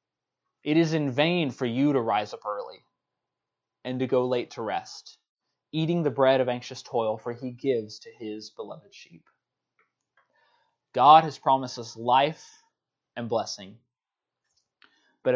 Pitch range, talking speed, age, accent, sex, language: 120-150 Hz, 145 wpm, 20-39, American, male, English